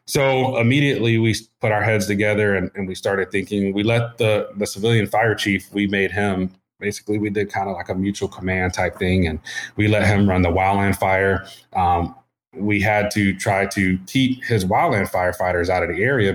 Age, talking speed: 30-49, 200 wpm